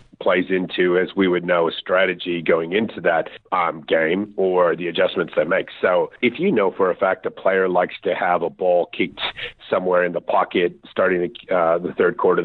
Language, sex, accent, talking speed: English, male, American, 205 wpm